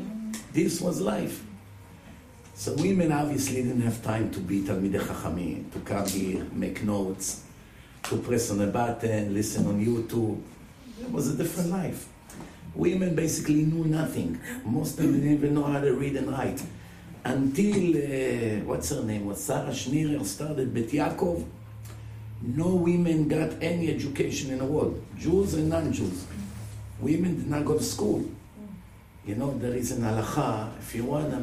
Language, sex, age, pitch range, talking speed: English, male, 50-69, 105-150 Hz, 160 wpm